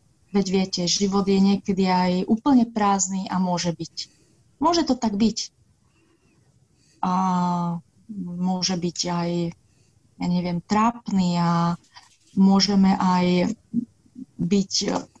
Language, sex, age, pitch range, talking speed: Slovak, female, 30-49, 175-230 Hz, 105 wpm